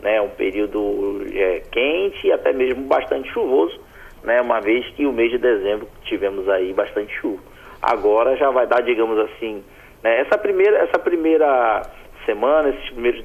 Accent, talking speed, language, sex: Brazilian, 155 wpm, Portuguese, male